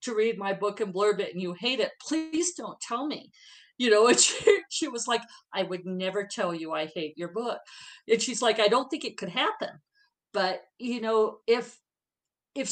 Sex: female